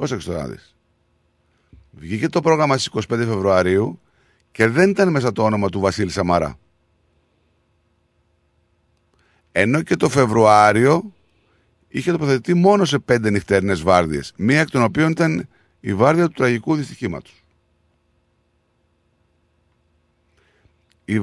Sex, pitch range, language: male, 85-120 Hz, Greek